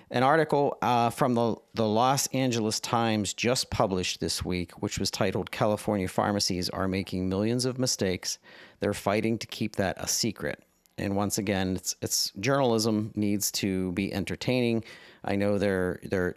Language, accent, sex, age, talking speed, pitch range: English, American, male, 40-59, 160 wpm, 95-115 Hz